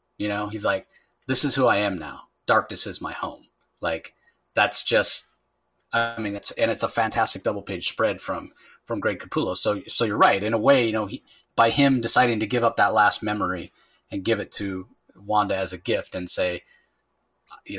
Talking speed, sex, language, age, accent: 200 wpm, male, English, 30-49, American